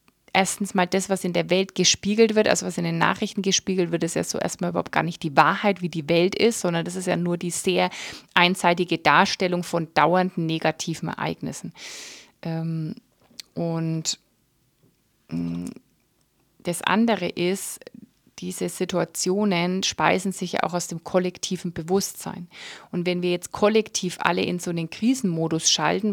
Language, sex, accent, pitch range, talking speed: German, female, German, 165-190 Hz, 155 wpm